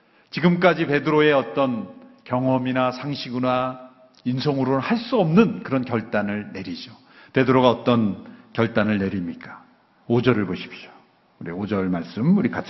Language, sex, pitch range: Korean, male, 125-200 Hz